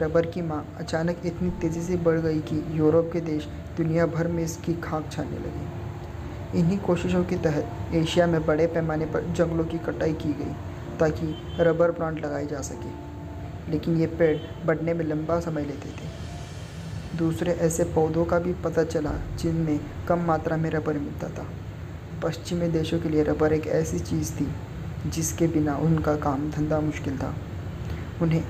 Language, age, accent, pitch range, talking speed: Hindi, 20-39, native, 150-165 Hz, 170 wpm